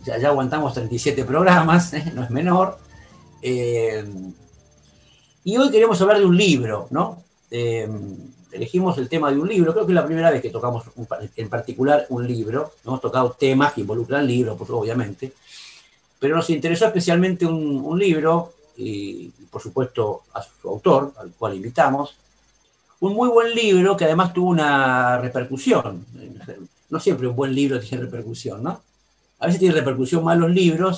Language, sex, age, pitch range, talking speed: Spanish, male, 50-69, 125-165 Hz, 160 wpm